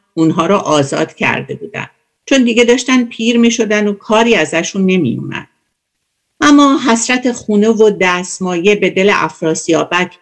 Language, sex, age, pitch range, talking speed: Persian, female, 50-69, 165-240 Hz, 135 wpm